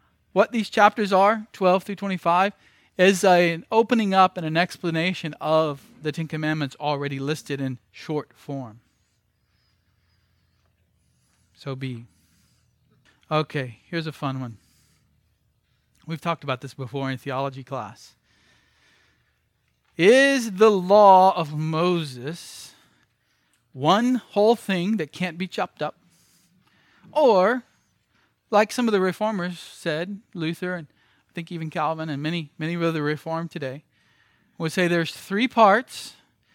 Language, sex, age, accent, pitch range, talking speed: English, male, 40-59, American, 130-185 Hz, 125 wpm